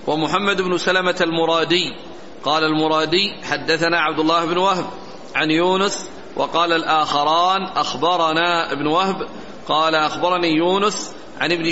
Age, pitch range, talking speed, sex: 40-59, 160-185 Hz, 120 wpm, male